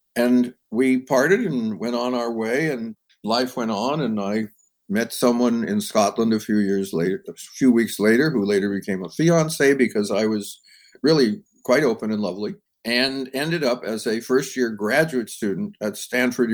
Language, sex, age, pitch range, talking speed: English, male, 50-69, 110-135 Hz, 180 wpm